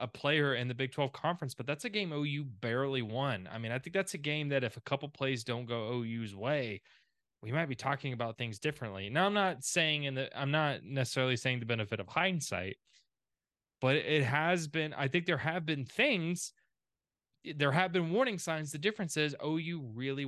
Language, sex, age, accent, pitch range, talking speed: English, male, 20-39, American, 120-150 Hz, 210 wpm